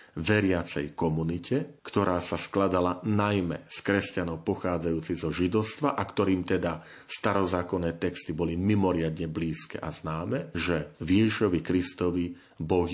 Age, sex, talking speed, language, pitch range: 40-59, male, 115 wpm, Slovak, 85-100 Hz